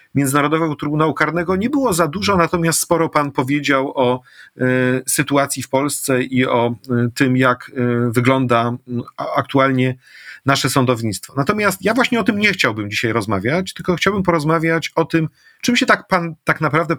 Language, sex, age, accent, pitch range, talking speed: Polish, male, 40-59, native, 130-165 Hz, 150 wpm